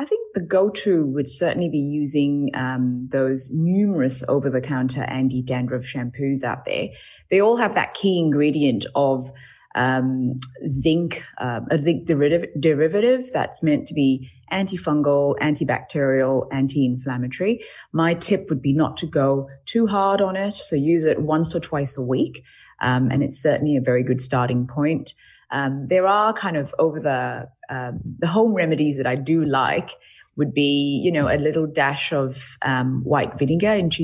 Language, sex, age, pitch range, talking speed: English, female, 20-39, 135-170 Hz, 160 wpm